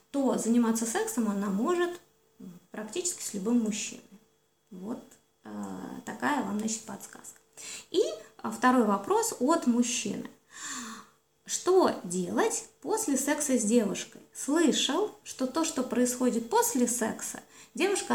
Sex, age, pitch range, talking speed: female, 20-39, 230-300 Hz, 110 wpm